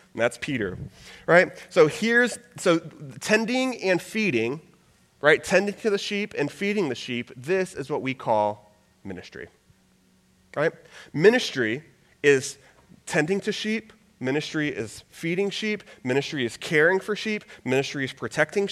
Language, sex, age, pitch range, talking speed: English, male, 30-49, 125-185 Hz, 135 wpm